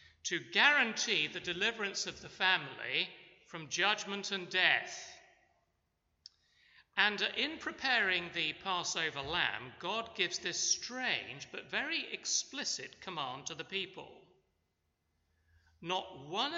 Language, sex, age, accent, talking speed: English, male, 40-59, British, 110 wpm